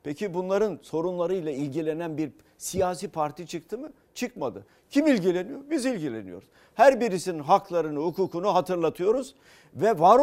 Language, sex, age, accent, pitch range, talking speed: Turkish, male, 50-69, native, 155-215 Hz, 125 wpm